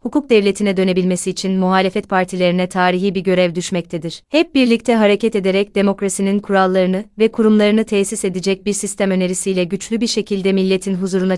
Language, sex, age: Turkish, female, 30-49